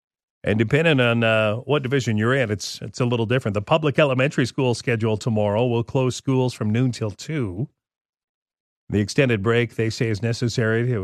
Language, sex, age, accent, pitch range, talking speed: English, male, 40-59, American, 110-135 Hz, 185 wpm